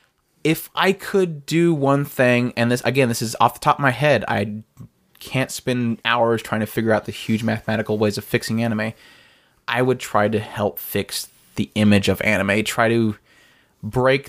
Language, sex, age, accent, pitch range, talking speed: English, male, 20-39, American, 105-125 Hz, 190 wpm